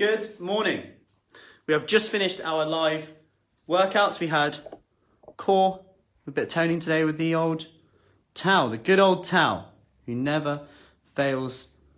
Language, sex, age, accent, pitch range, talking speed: English, male, 30-49, British, 140-195 Hz, 140 wpm